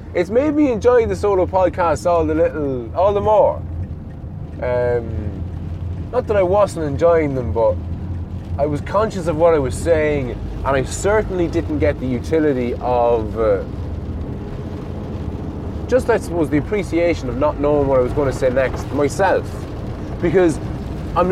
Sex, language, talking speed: male, English, 160 wpm